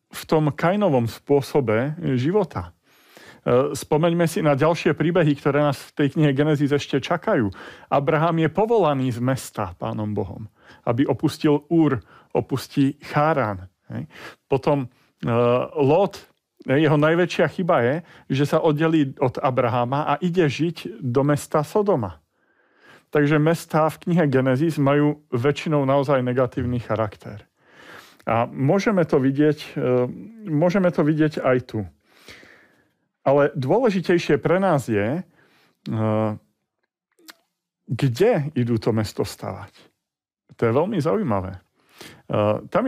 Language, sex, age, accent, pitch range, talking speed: Czech, male, 40-59, native, 125-160 Hz, 110 wpm